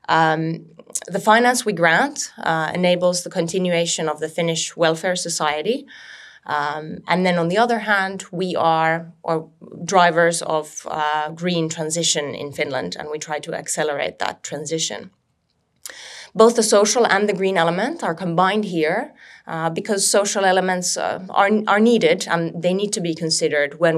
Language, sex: Finnish, female